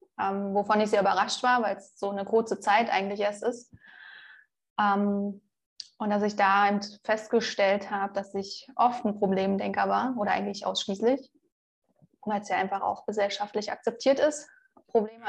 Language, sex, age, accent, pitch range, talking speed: German, female, 20-39, German, 200-220 Hz, 155 wpm